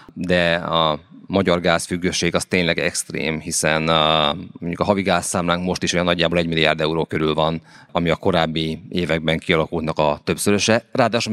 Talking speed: 160 wpm